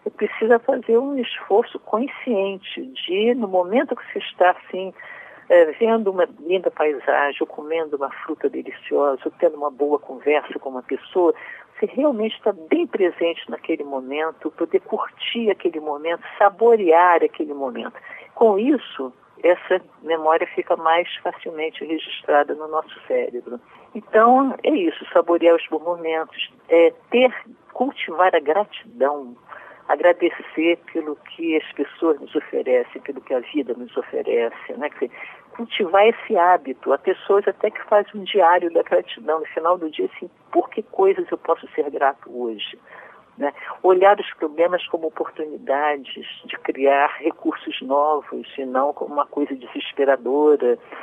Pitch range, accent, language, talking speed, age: 155-245 Hz, Brazilian, Portuguese, 140 wpm, 50-69